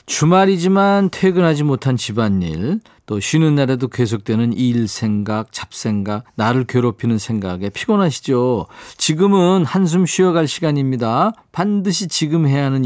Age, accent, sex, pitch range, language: 40-59, native, male, 115-165 Hz, Korean